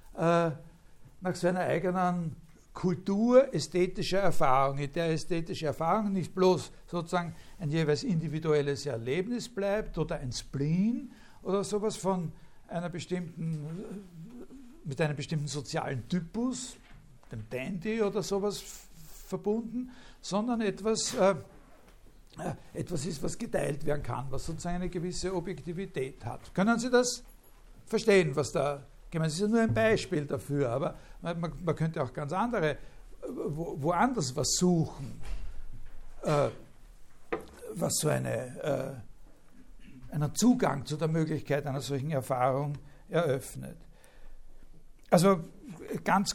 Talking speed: 115 wpm